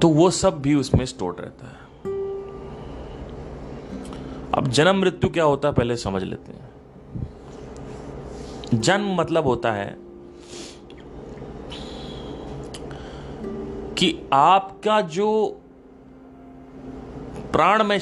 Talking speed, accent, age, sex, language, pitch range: 85 wpm, native, 30-49, male, Hindi, 105-175 Hz